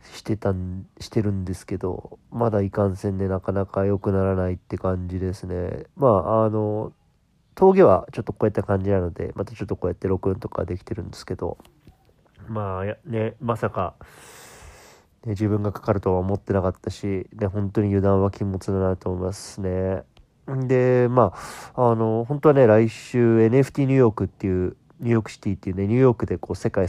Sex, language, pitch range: male, Japanese, 95-110 Hz